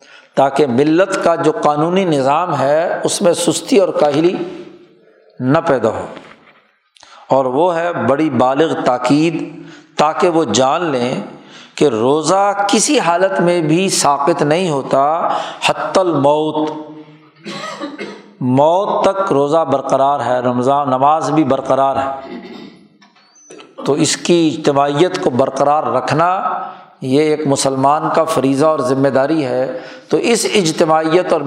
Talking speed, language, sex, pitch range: 125 wpm, Urdu, male, 140-175 Hz